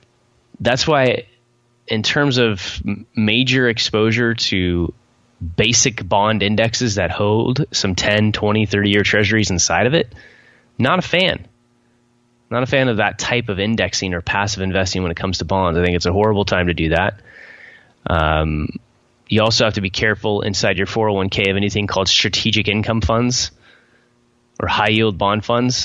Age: 20-39